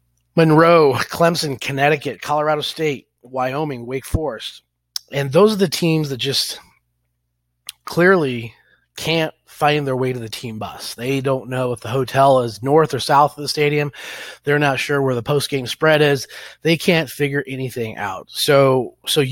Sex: male